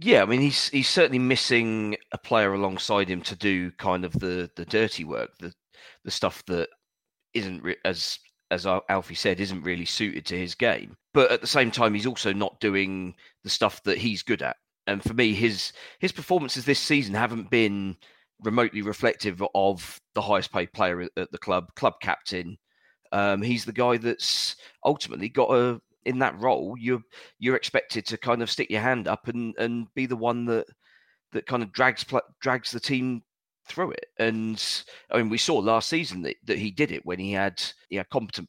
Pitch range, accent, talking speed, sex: 100-120 Hz, British, 195 wpm, male